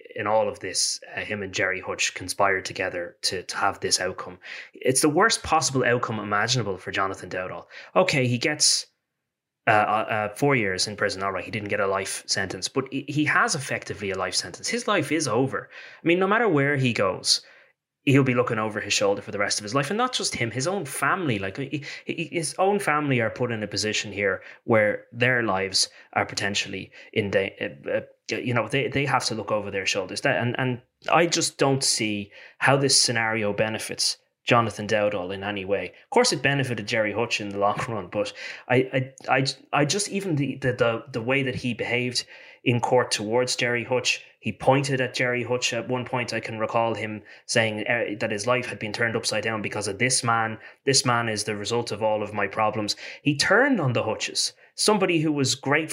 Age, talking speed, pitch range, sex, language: 20-39, 210 wpm, 105-140 Hz, male, English